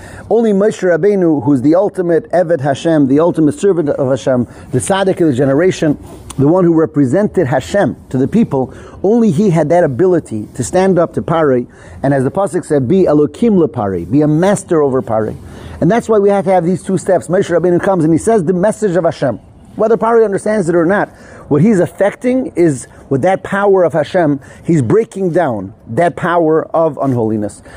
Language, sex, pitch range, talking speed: English, male, 135-190 Hz, 190 wpm